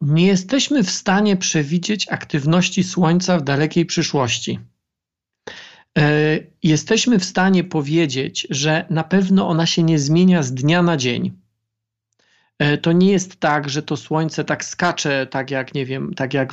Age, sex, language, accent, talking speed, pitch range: 40-59, male, Polish, native, 135 wpm, 145-180 Hz